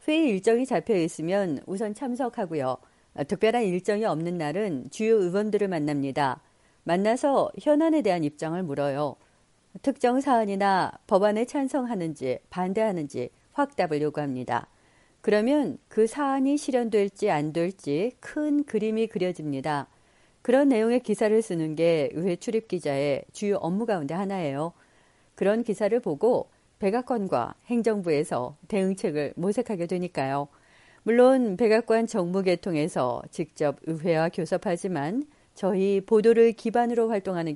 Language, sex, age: Korean, female, 40-59